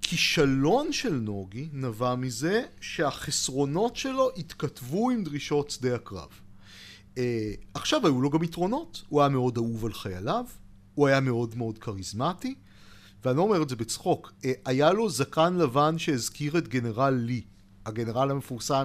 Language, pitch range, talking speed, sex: Hebrew, 125-180 Hz, 135 wpm, male